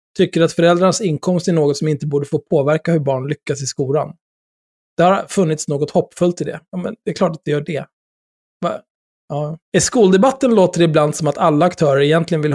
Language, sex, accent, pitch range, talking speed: Swedish, male, native, 145-180 Hz, 210 wpm